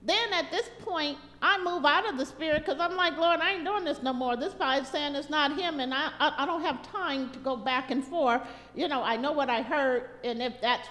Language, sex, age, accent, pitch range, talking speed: English, female, 50-69, American, 230-300 Hz, 265 wpm